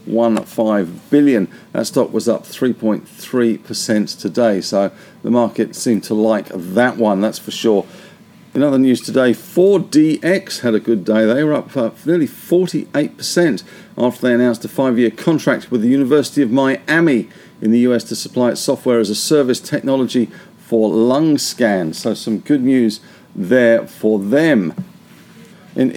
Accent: British